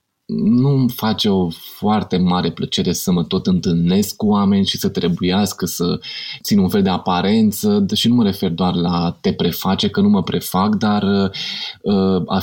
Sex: male